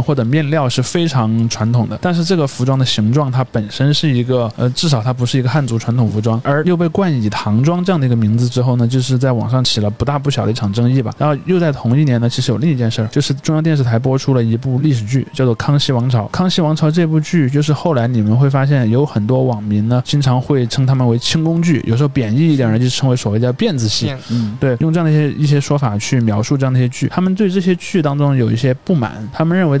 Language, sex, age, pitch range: Chinese, male, 20-39, 115-150 Hz